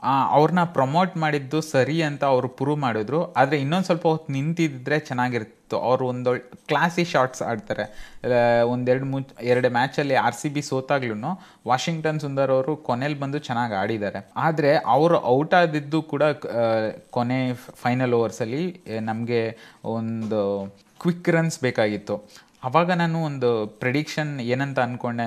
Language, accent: Kannada, native